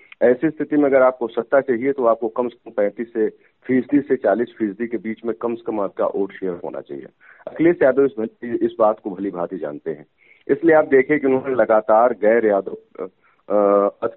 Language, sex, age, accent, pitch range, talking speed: Hindi, male, 40-59, native, 105-130 Hz, 200 wpm